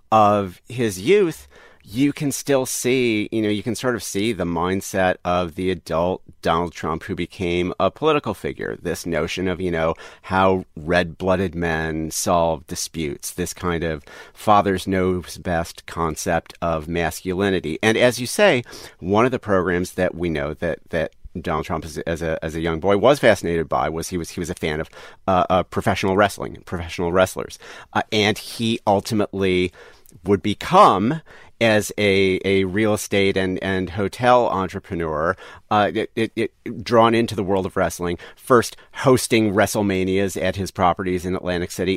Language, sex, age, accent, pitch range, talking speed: English, male, 40-59, American, 90-115 Hz, 165 wpm